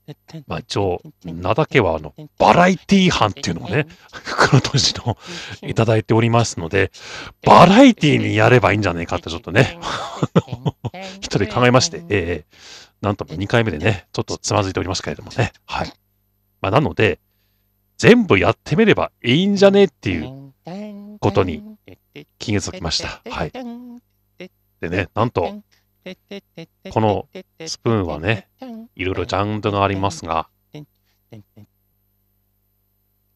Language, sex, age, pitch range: Japanese, male, 40-59, 100-160 Hz